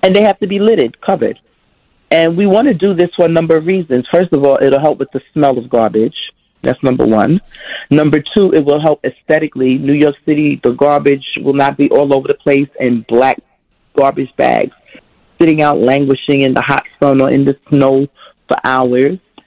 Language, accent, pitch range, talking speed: English, American, 140-185 Hz, 205 wpm